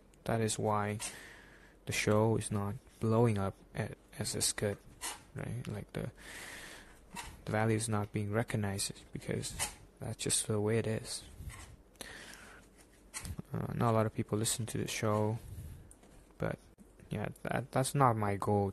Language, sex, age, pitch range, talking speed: English, male, 20-39, 105-115 Hz, 145 wpm